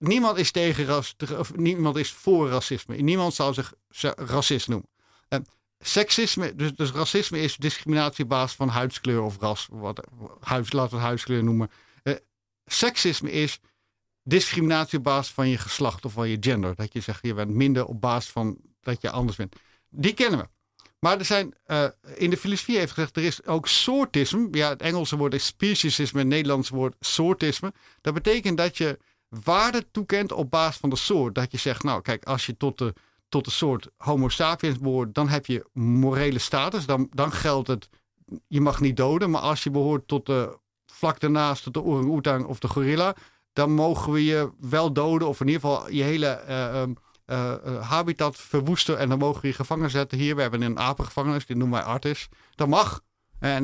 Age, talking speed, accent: 60-79, 195 wpm, Dutch